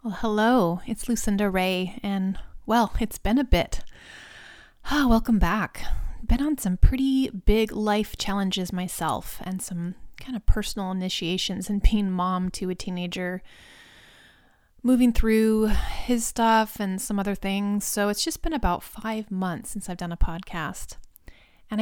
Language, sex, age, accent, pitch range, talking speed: English, female, 30-49, American, 185-220 Hz, 150 wpm